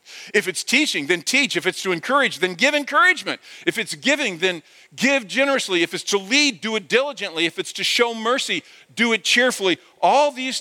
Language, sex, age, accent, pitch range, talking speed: English, male, 50-69, American, 190-265 Hz, 200 wpm